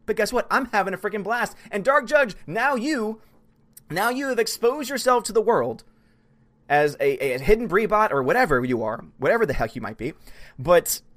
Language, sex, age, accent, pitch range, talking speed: English, male, 30-49, American, 175-235 Hz, 200 wpm